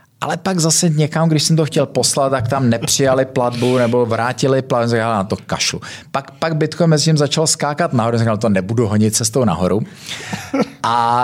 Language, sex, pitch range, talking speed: Czech, male, 95-125 Hz, 180 wpm